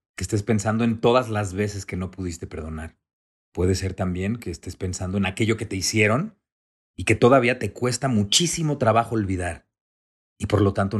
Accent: Mexican